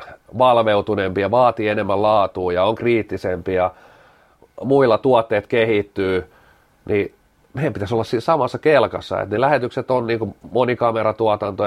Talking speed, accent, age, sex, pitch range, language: 120 wpm, native, 40-59, male, 105-125 Hz, Finnish